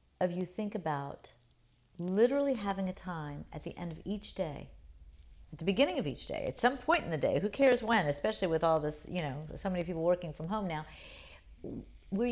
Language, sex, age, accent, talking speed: English, female, 40-59, American, 210 wpm